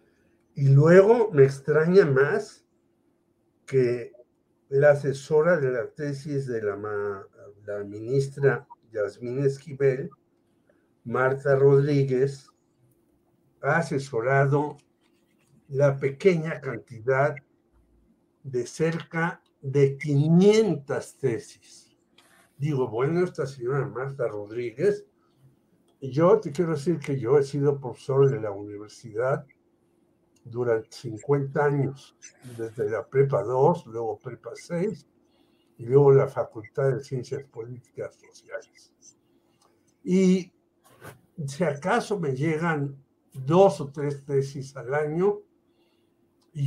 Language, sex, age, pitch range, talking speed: Spanish, male, 60-79, 135-155 Hz, 100 wpm